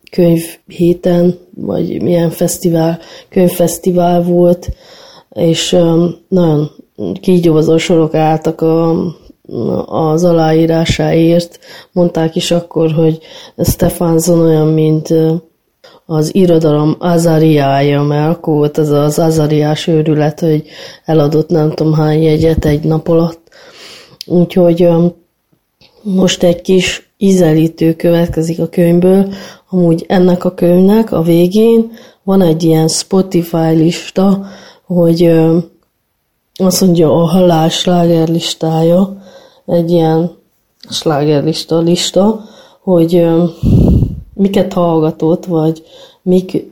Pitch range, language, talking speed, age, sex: 160-185 Hz, Hungarian, 100 wpm, 30-49, female